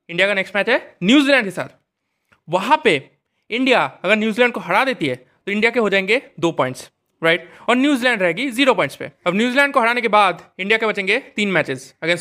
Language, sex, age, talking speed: Hindi, male, 20-39, 210 wpm